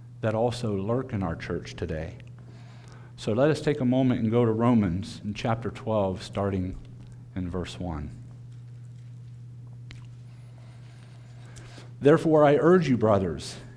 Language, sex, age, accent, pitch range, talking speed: English, male, 50-69, American, 120-135 Hz, 125 wpm